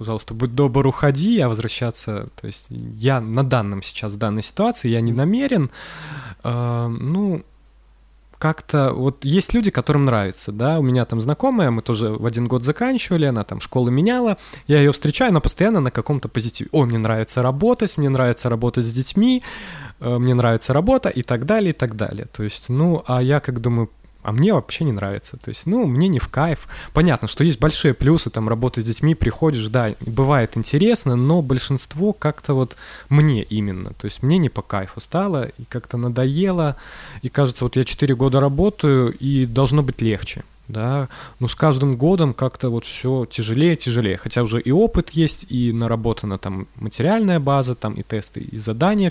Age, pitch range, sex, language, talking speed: 20-39, 115-150 Hz, male, Russian, 185 wpm